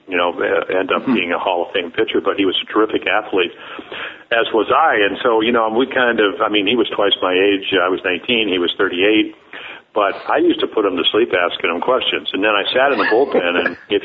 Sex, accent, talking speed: male, American, 250 wpm